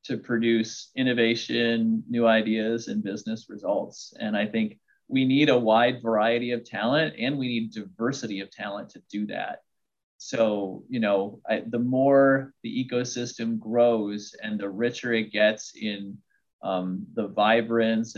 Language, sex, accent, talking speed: English, male, American, 145 wpm